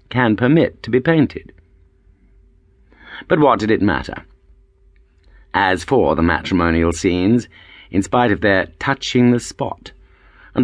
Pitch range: 90-125 Hz